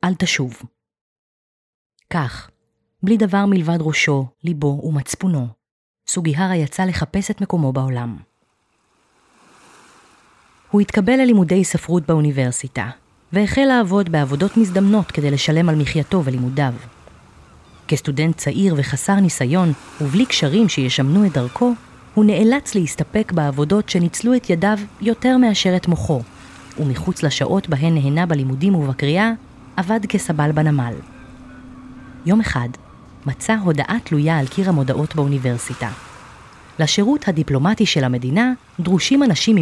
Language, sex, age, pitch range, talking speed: Hebrew, female, 20-39, 135-195 Hz, 110 wpm